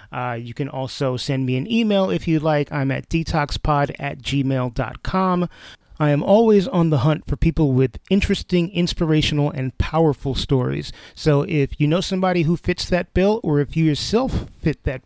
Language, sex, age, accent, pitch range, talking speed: English, male, 30-49, American, 130-165 Hz, 180 wpm